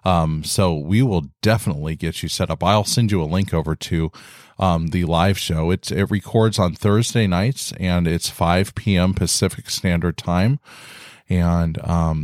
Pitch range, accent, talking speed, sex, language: 85-110 Hz, American, 165 wpm, male, English